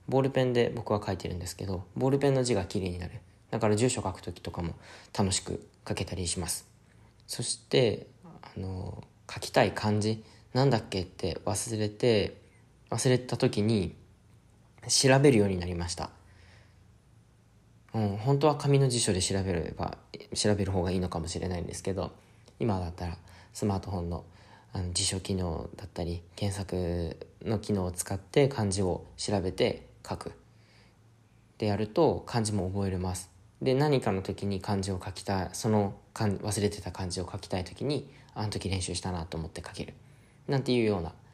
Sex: male